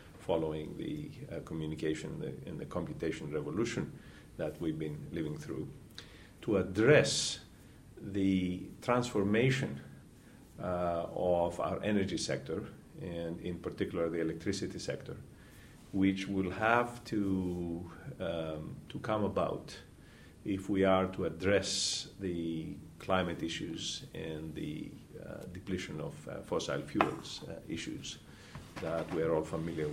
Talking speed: 115 wpm